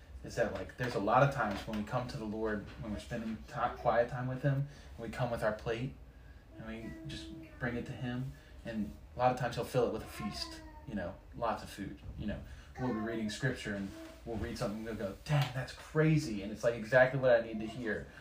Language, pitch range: English, 105-140 Hz